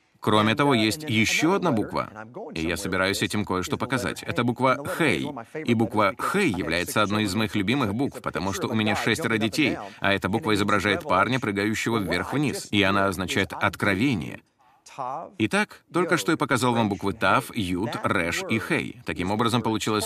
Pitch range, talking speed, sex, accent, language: 100-130 Hz, 170 wpm, male, native, Russian